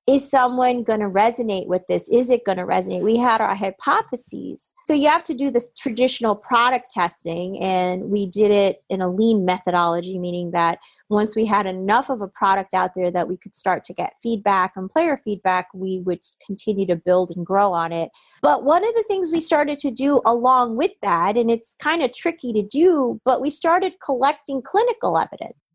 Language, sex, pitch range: English, female, 195-260 Hz